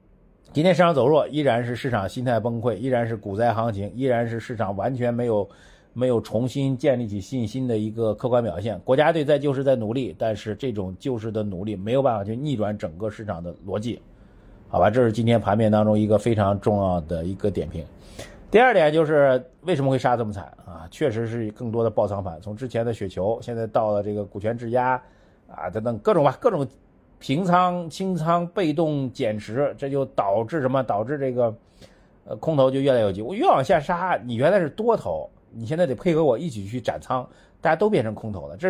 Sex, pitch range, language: male, 105-145 Hz, Chinese